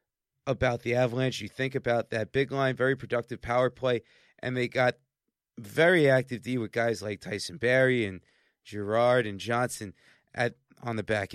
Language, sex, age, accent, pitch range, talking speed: English, male, 30-49, American, 110-135 Hz, 170 wpm